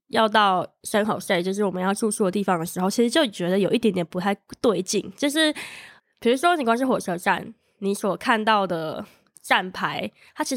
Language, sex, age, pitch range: Chinese, female, 20-39, 190-250 Hz